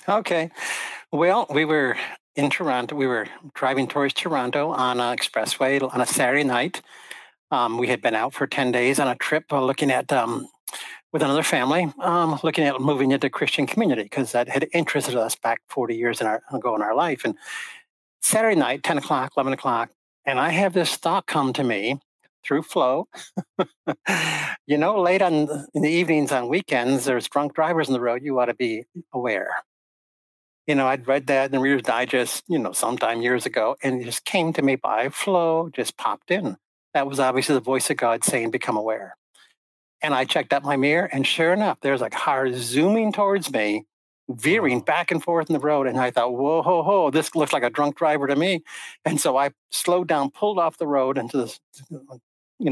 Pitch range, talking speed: 130-165 Hz, 200 wpm